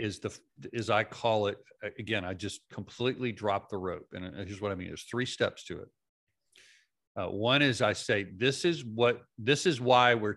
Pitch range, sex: 100-120 Hz, male